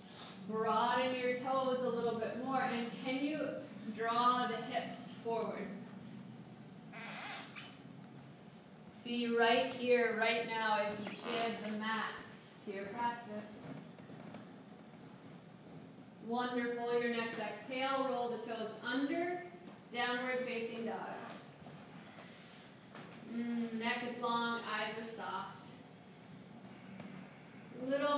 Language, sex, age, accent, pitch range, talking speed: English, female, 30-49, American, 215-250 Hz, 100 wpm